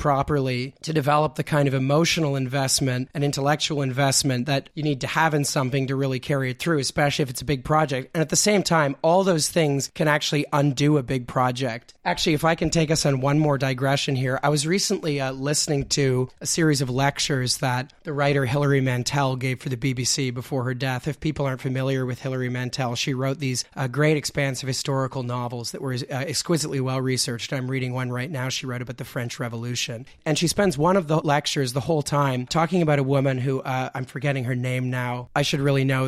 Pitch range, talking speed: 130-150 Hz, 220 wpm